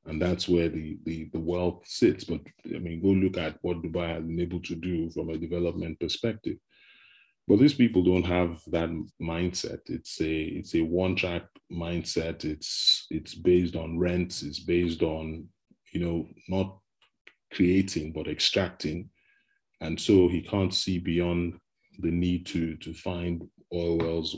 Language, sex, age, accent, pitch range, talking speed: English, male, 30-49, Nigerian, 80-95 Hz, 160 wpm